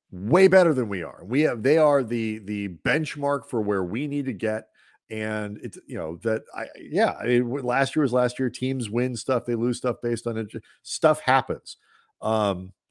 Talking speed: 205 wpm